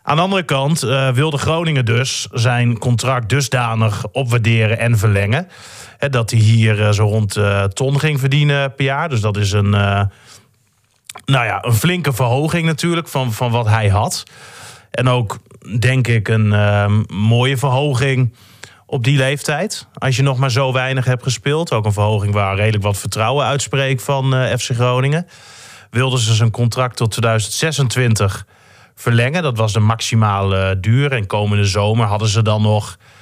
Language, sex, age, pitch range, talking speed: Dutch, male, 30-49, 110-135 Hz, 160 wpm